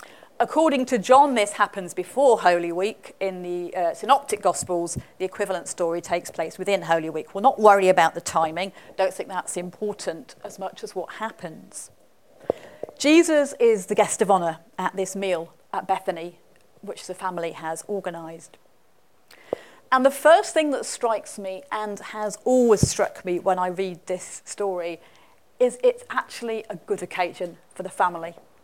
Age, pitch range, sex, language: 40-59, 185-255 Hz, female, English